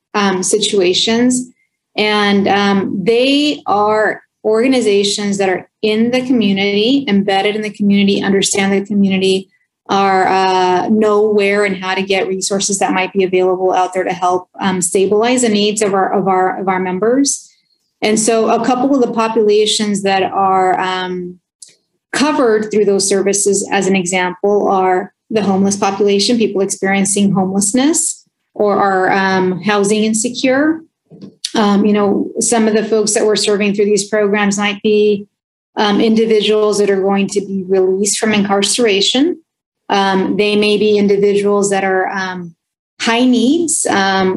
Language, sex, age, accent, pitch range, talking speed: English, female, 30-49, American, 195-215 Hz, 150 wpm